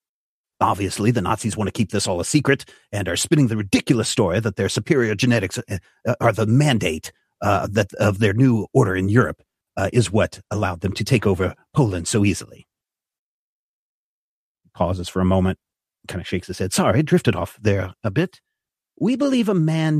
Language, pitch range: English, 105-155 Hz